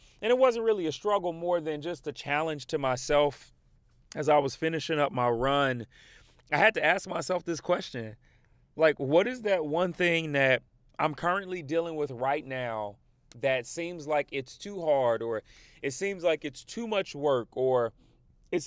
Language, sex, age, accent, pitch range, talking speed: English, male, 30-49, American, 130-180 Hz, 180 wpm